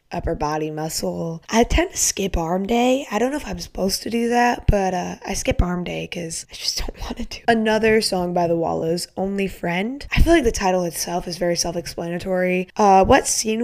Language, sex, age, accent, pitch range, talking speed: English, female, 20-39, American, 170-210 Hz, 225 wpm